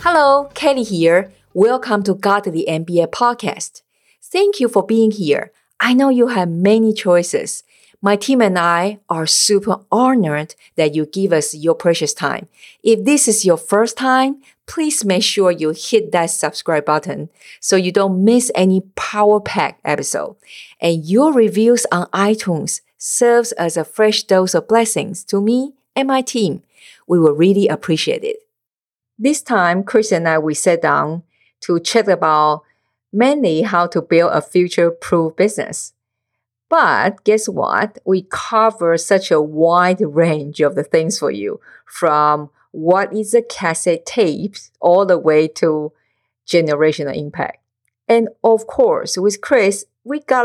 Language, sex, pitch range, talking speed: English, female, 165-225 Hz, 150 wpm